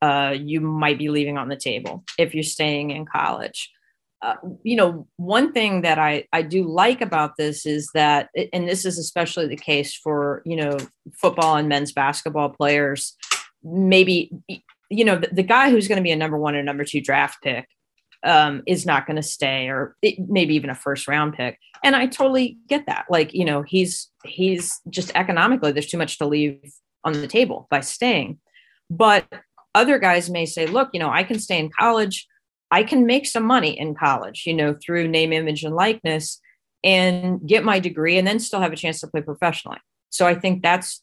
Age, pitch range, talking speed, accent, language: 30-49, 150-190 Hz, 205 wpm, American, English